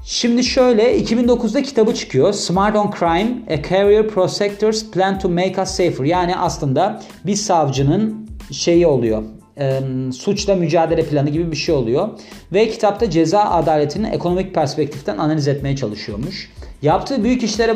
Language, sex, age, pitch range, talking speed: Turkish, male, 40-59, 140-195 Hz, 140 wpm